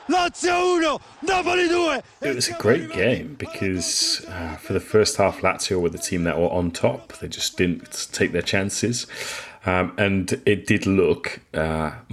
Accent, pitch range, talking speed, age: British, 80-95 Hz, 155 wpm, 30-49